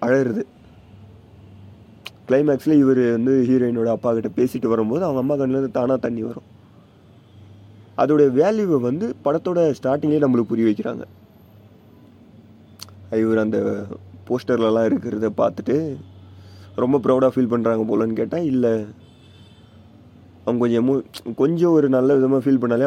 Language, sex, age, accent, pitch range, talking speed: Tamil, male, 30-49, native, 110-140 Hz, 115 wpm